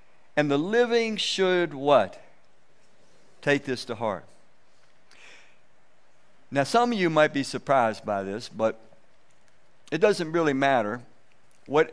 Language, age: English, 60-79